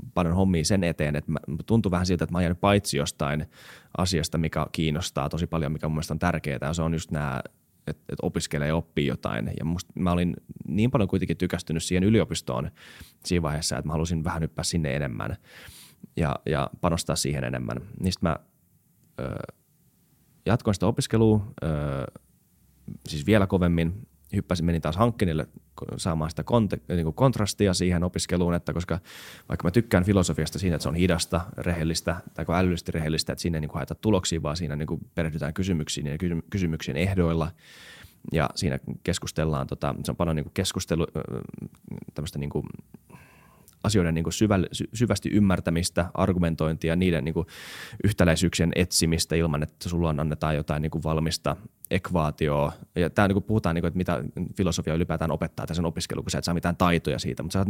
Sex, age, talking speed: male, 20-39, 150 wpm